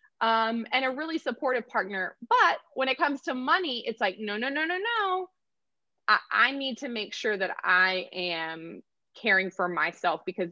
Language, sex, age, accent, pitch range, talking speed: English, female, 20-39, American, 185-265 Hz, 185 wpm